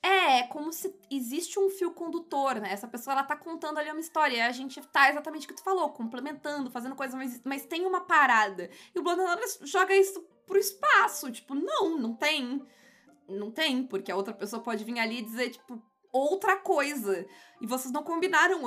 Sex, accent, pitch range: female, Brazilian, 220-315 Hz